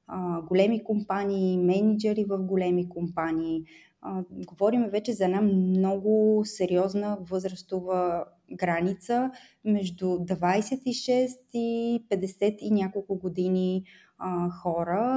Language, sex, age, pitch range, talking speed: Bulgarian, female, 20-39, 185-230 Hz, 85 wpm